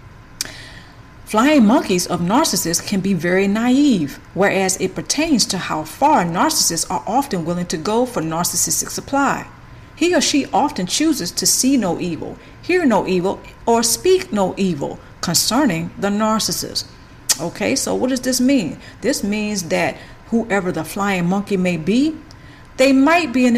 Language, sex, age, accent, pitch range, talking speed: English, female, 40-59, American, 175-255 Hz, 155 wpm